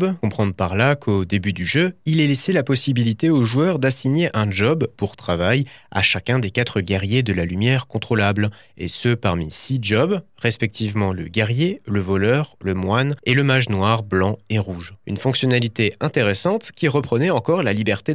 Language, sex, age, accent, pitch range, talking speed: French, male, 20-39, French, 105-145 Hz, 180 wpm